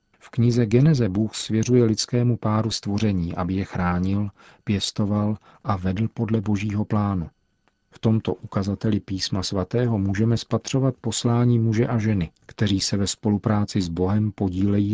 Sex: male